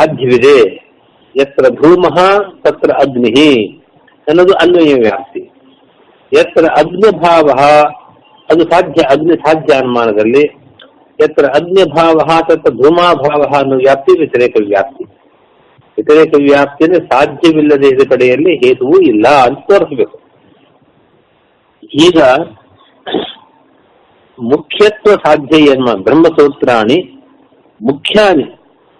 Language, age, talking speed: Kannada, 60-79, 65 wpm